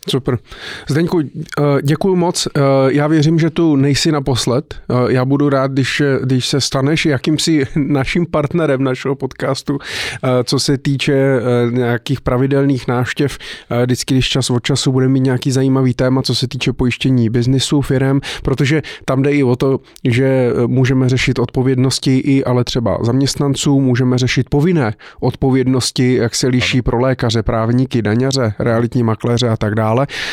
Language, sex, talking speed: Czech, male, 150 wpm